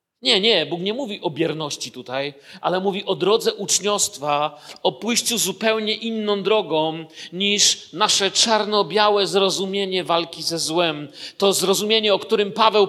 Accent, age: native, 40-59